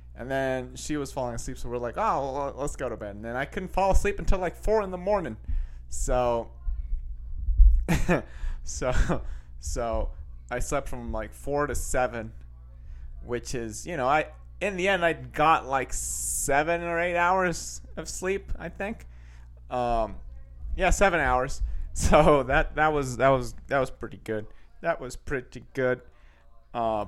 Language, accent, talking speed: English, American, 165 wpm